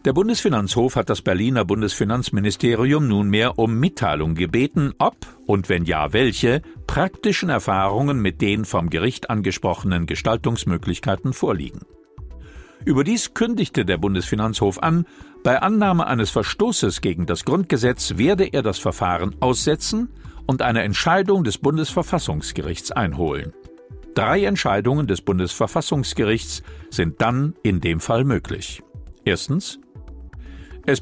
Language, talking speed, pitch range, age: German, 115 wpm, 95-145 Hz, 50-69